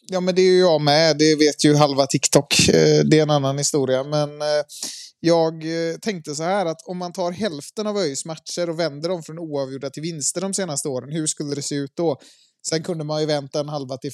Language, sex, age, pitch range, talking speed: Swedish, male, 20-39, 145-180 Hz, 225 wpm